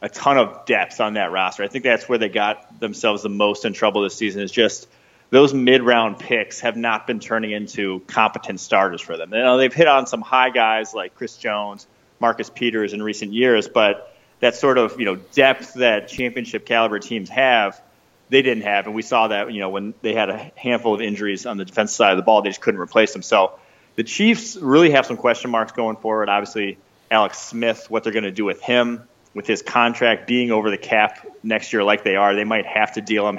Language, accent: English, American